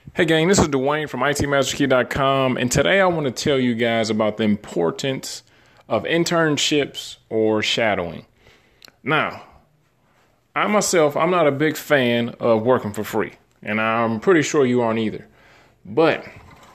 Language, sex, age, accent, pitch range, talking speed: English, male, 30-49, American, 110-150 Hz, 150 wpm